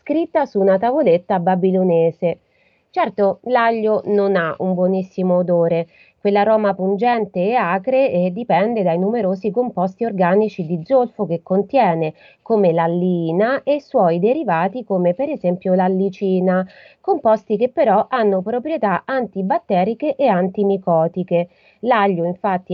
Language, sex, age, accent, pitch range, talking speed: Italian, female, 30-49, native, 180-235 Hz, 120 wpm